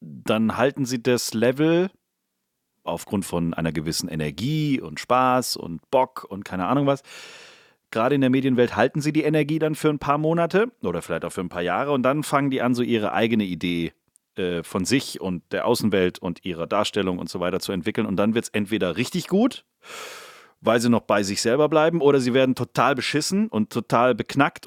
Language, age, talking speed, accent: German, 30-49, 200 wpm, German